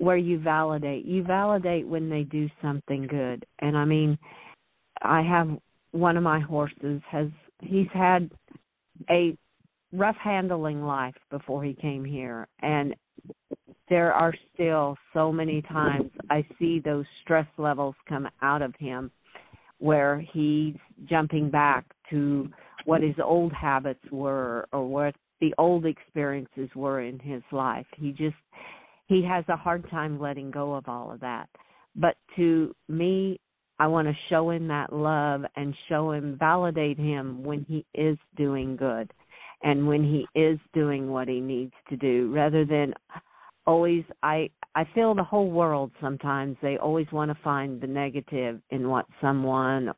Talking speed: 155 wpm